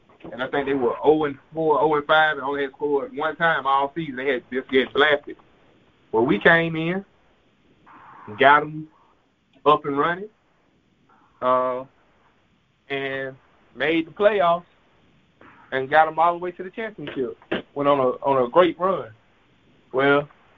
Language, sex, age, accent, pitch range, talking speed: English, male, 30-49, American, 130-160 Hz, 155 wpm